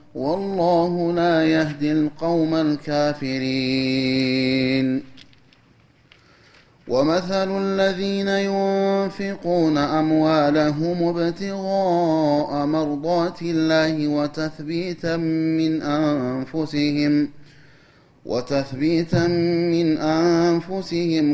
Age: 30-49